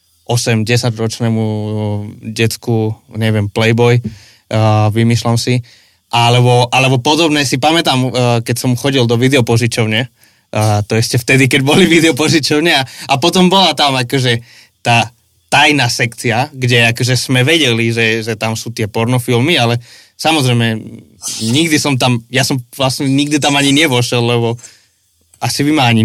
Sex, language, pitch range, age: male, Slovak, 115-135 Hz, 20-39